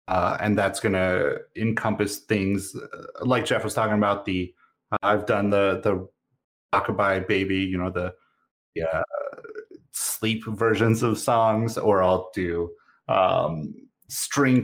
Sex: male